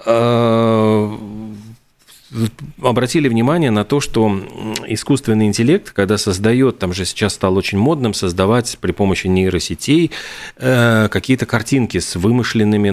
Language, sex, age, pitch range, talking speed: Russian, male, 40-59, 95-120 Hz, 105 wpm